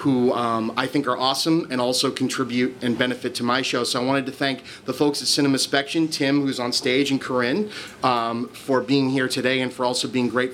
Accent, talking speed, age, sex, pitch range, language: American, 230 wpm, 30-49, male, 125-155 Hz, English